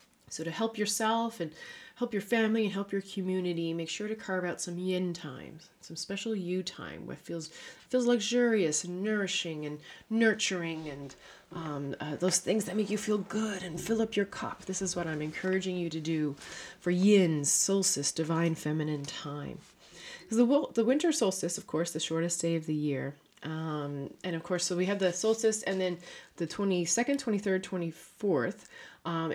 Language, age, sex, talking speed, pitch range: English, 30-49, female, 185 wpm, 160-205 Hz